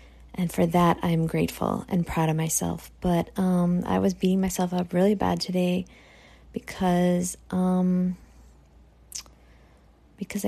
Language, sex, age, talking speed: English, female, 20-39, 125 wpm